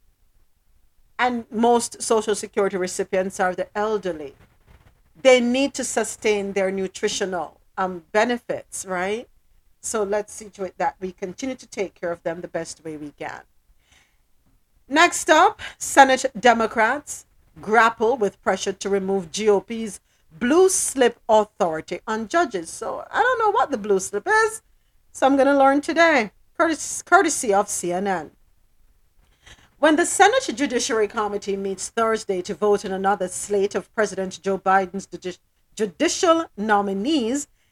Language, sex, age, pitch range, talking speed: English, female, 50-69, 190-250 Hz, 135 wpm